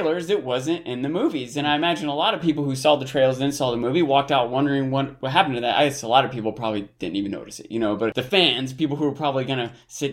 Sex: male